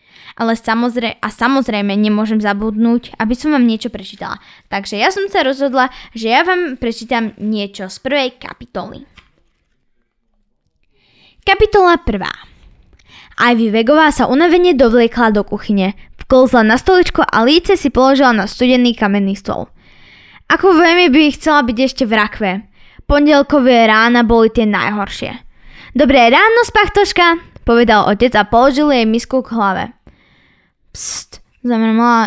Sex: female